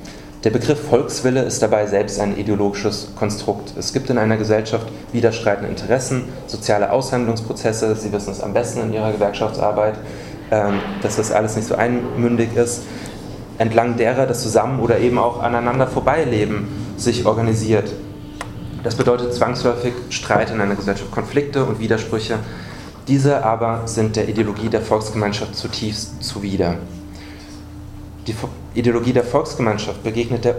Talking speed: 135 wpm